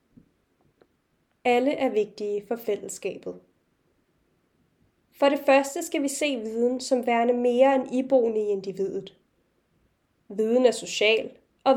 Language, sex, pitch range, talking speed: Danish, female, 215-270 Hz, 115 wpm